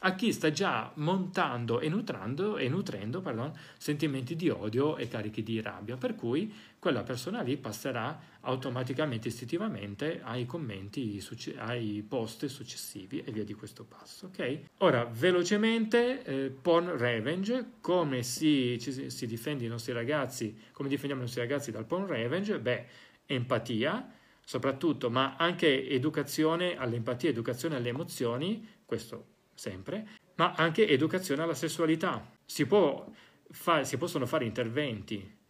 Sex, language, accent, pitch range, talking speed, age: male, Italian, native, 115-160 Hz, 125 wpm, 40-59